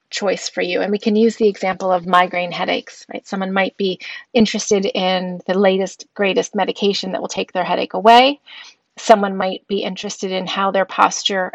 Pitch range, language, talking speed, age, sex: 185-225 Hz, English, 185 wpm, 30-49, female